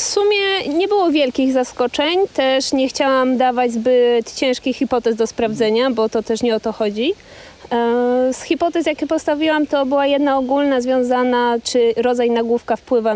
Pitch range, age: 210-260 Hz, 20-39